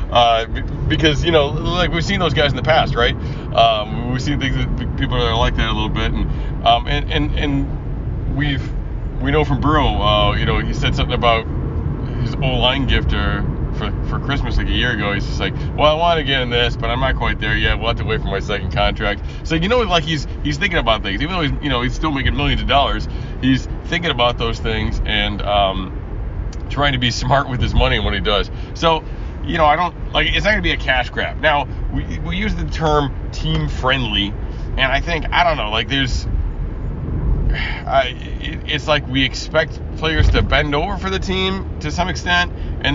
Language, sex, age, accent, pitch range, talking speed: English, male, 30-49, American, 100-135 Hz, 225 wpm